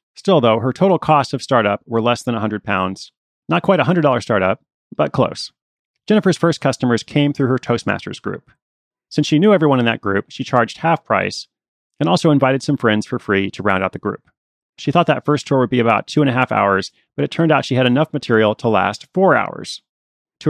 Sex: male